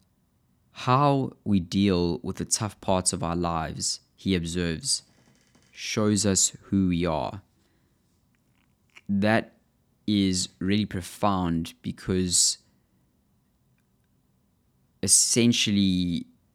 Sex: male